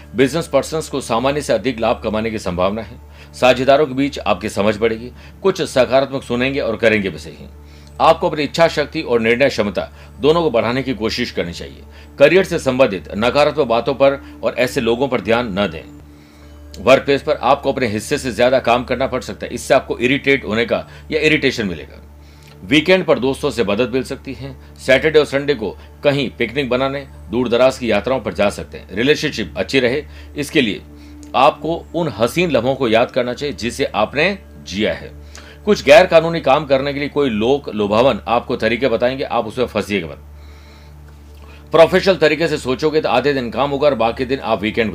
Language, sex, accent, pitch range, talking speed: Hindi, male, native, 85-140 Hz, 185 wpm